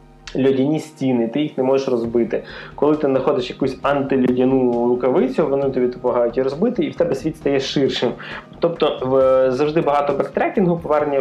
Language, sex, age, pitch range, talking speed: Ukrainian, male, 20-39, 125-150 Hz, 155 wpm